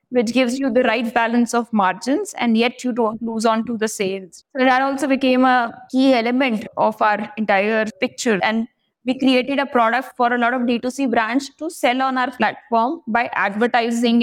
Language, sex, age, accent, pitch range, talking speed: English, female, 20-39, Indian, 220-270 Hz, 190 wpm